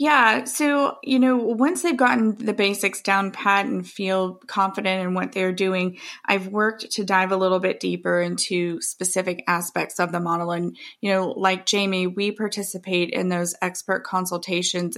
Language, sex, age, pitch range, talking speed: English, female, 20-39, 180-215 Hz, 170 wpm